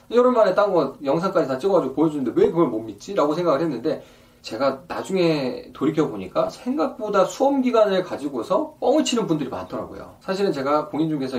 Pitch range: 145-200 Hz